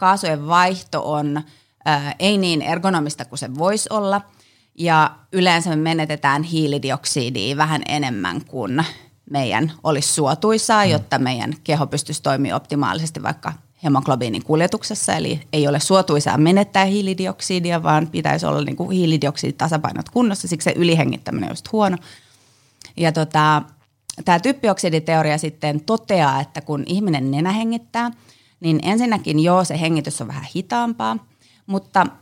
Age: 30-49